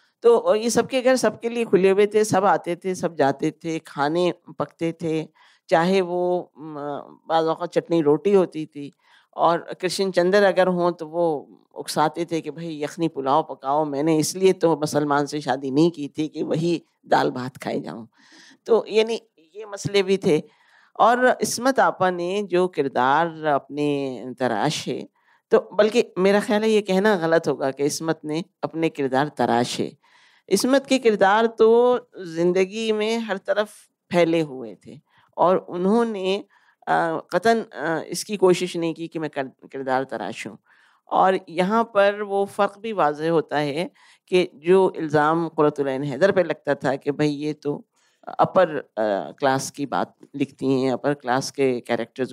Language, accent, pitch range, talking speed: Hindi, native, 145-195 Hz, 155 wpm